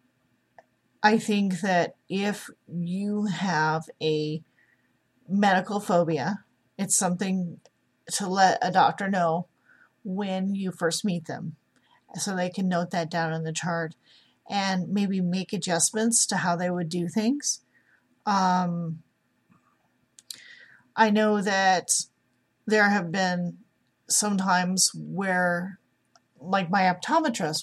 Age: 40-59